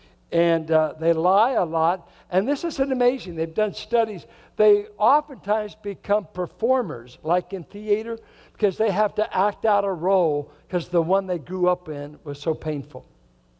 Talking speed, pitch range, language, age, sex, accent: 170 wpm, 140-185 Hz, English, 60-79, male, American